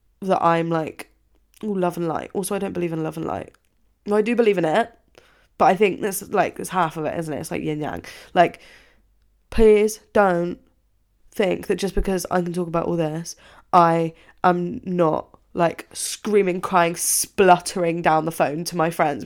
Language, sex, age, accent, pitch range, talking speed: English, female, 20-39, British, 160-195 Hz, 195 wpm